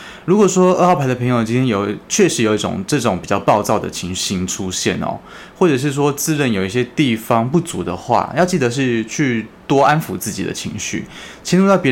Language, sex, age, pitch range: Chinese, male, 20-39, 100-130 Hz